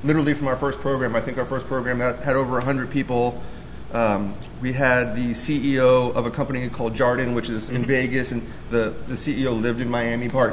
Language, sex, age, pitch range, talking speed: English, male, 30-49, 125-145 Hz, 205 wpm